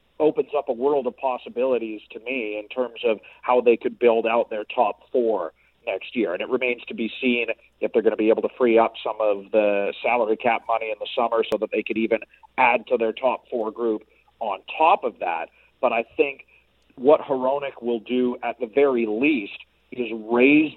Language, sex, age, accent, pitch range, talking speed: English, male, 40-59, American, 115-130 Hz, 210 wpm